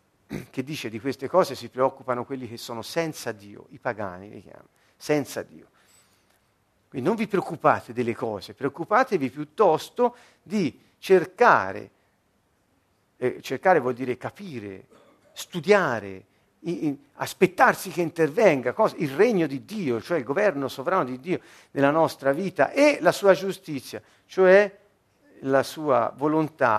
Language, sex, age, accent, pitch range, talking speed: Italian, male, 50-69, native, 120-190 Hz, 130 wpm